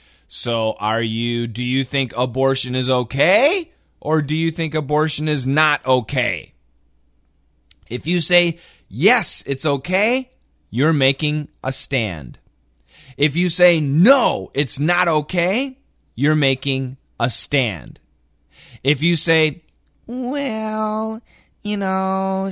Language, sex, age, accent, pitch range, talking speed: English, male, 30-49, American, 105-160 Hz, 115 wpm